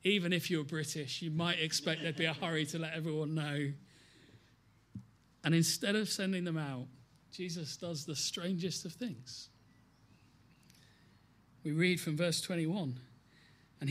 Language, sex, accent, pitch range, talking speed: English, male, British, 145-240 Hz, 140 wpm